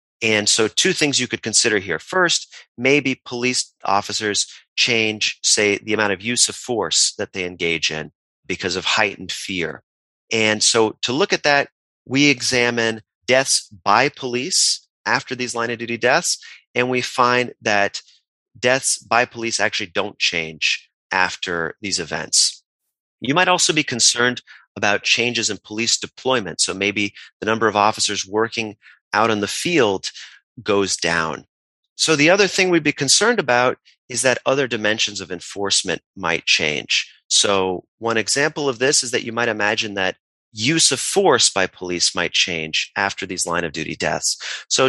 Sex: male